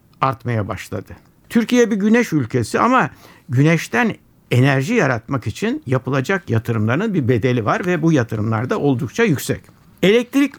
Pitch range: 125-185 Hz